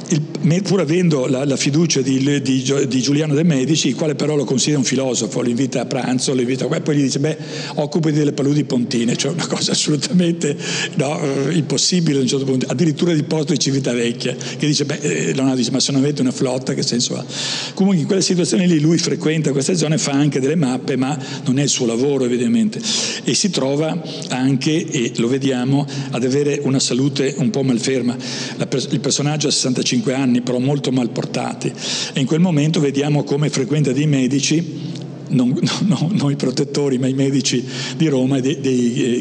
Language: Italian